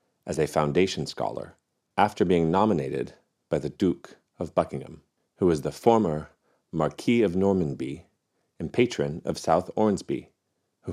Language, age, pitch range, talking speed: English, 40-59, 75-100 Hz, 135 wpm